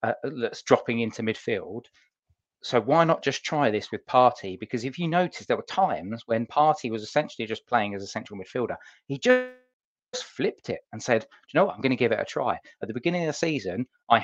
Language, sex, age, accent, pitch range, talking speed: English, male, 20-39, British, 110-140 Hz, 230 wpm